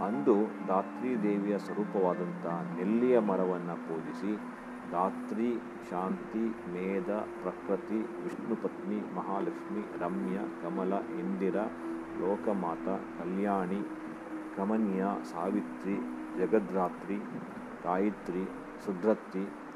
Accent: Indian